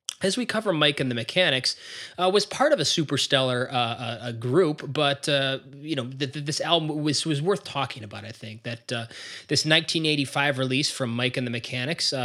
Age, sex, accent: 20-39, male, American